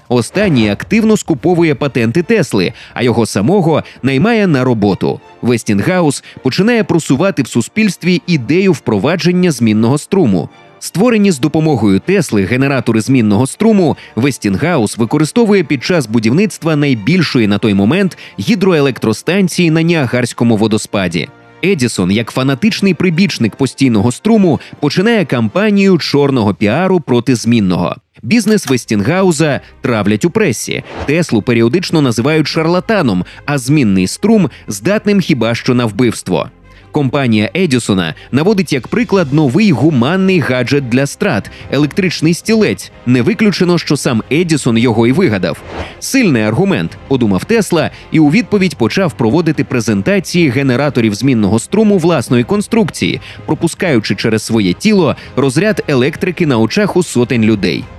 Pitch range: 115-185 Hz